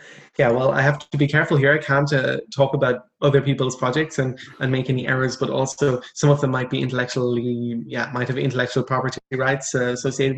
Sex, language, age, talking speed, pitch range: male, English, 20-39, 215 wpm, 125-145 Hz